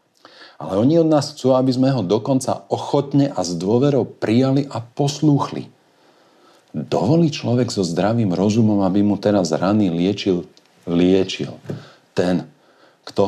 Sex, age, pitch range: male, 50-69, 100-145 Hz